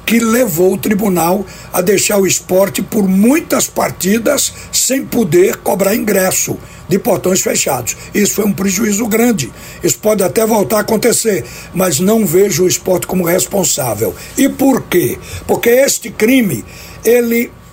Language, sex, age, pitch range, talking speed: Portuguese, male, 60-79, 185-235 Hz, 145 wpm